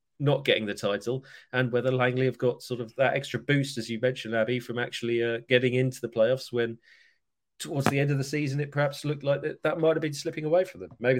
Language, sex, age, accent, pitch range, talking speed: English, male, 40-59, British, 105-135 Hz, 240 wpm